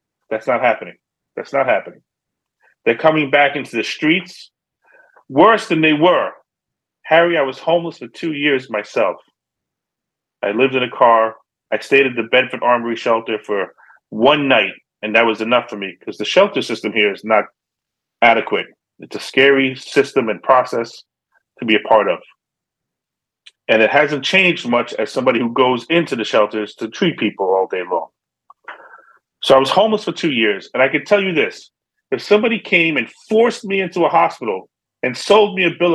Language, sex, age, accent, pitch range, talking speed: English, male, 30-49, American, 135-205 Hz, 180 wpm